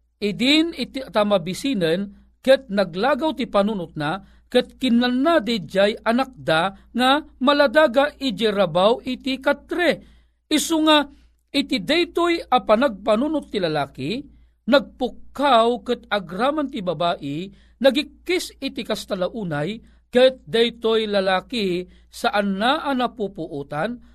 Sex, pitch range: male, 185-270 Hz